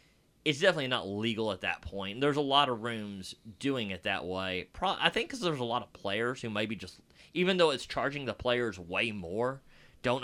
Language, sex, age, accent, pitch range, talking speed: English, male, 30-49, American, 100-135 Hz, 210 wpm